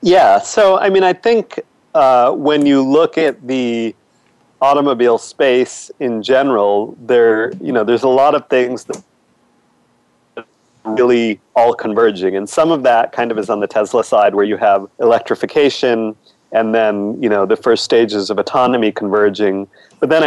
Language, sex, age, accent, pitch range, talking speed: English, male, 40-59, American, 110-140 Hz, 165 wpm